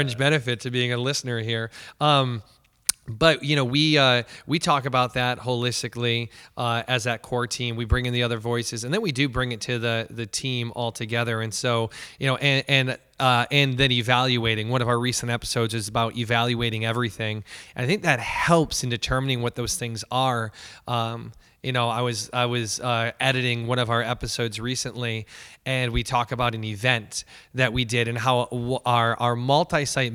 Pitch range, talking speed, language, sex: 120-135 Hz, 195 wpm, English, male